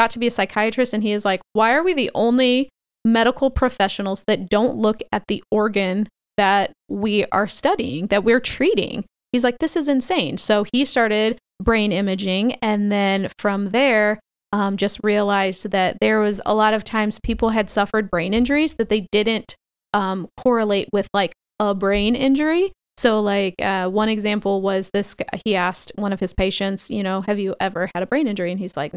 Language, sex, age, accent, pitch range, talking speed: English, female, 20-39, American, 200-250 Hz, 195 wpm